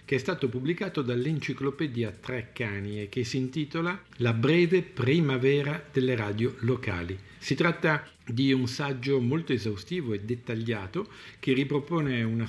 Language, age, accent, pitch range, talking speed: Italian, 50-69, native, 115-140 Hz, 135 wpm